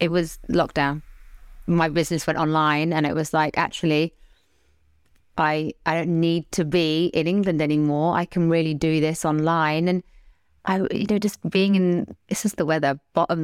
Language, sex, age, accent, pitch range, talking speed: English, female, 30-49, British, 160-230 Hz, 175 wpm